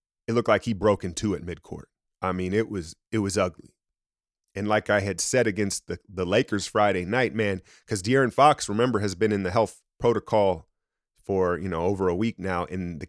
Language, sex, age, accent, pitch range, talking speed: English, male, 30-49, American, 100-130 Hz, 215 wpm